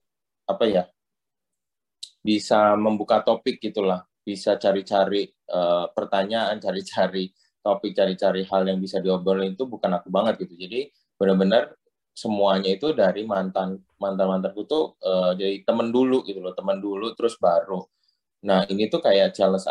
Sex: male